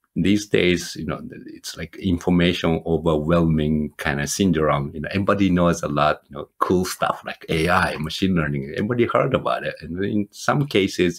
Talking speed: 175 wpm